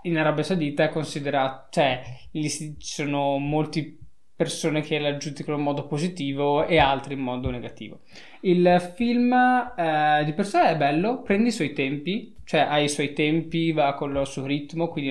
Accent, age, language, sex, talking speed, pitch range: native, 20-39, Italian, male, 175 wpm, 140-170 Hz